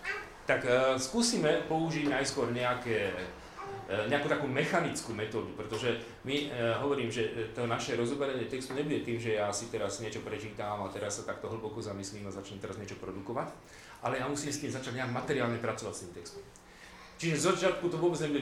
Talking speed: 190 wpm